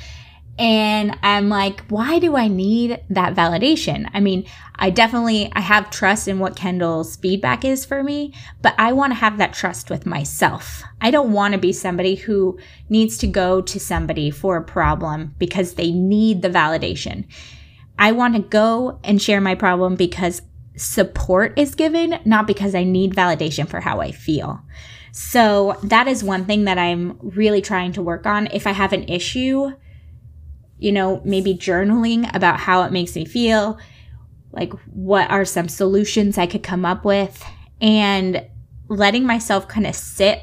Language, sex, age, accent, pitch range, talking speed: English, female, 20-39, American, 175-210 Hz, 170 wpm